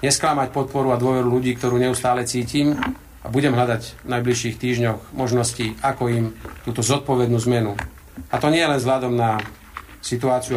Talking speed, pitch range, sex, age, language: 155 wpm, 115-130 Hz, male, 40-59, Slovak